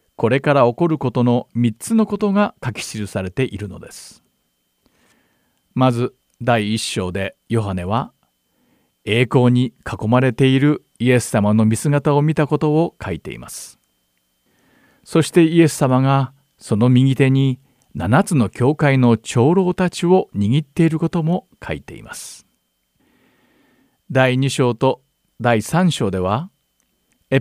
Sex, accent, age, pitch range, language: male, native, 50-69, 110-150 Hz, Japanese